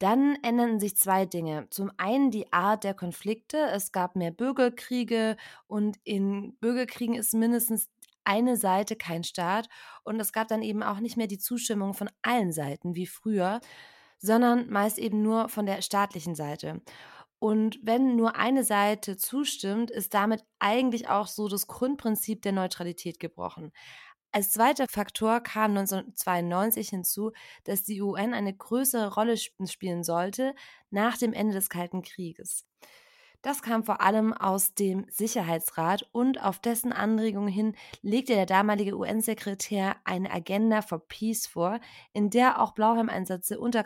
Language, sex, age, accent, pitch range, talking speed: German, female, 20-39, German, 195-230 Hz, 150 wpm